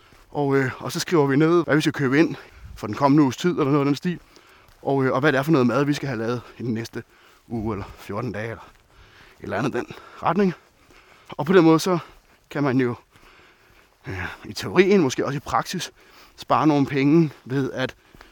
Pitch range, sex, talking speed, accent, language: 125-150 Hz, male, 225 wpm, native, Danish